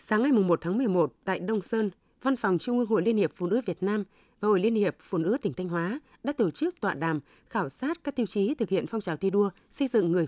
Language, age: Vietnamese, 20-39